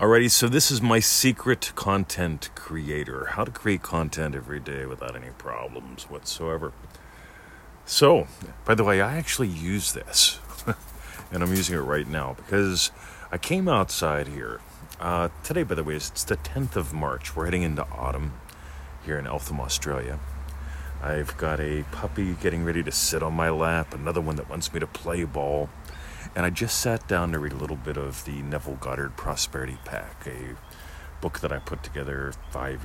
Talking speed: 175 wpm